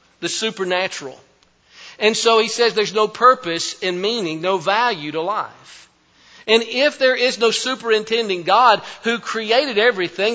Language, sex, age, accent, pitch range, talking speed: English, male, 50-69, American, 180-230 Hz, 145 wpm